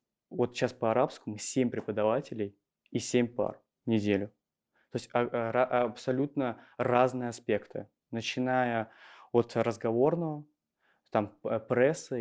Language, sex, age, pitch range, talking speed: Russian, male, 20-39, 110-135 Hz, 105 wpm